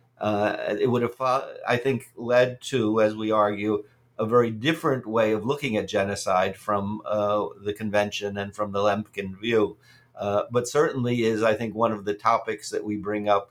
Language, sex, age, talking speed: English, male, 50-69, 185 wpm